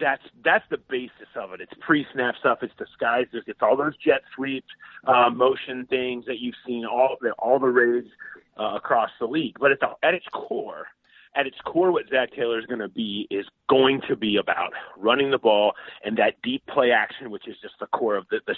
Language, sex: English, male